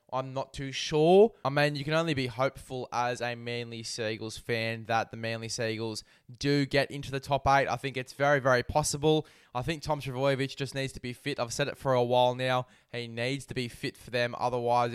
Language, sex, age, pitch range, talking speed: English, male, 10-29, 120-135 Hz, 225 wpm